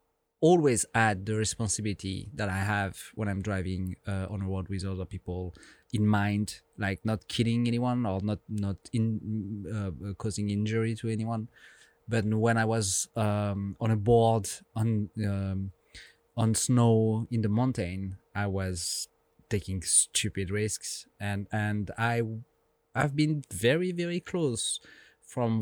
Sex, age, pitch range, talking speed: male, 30-49, 100-115 Hz, 145 wpm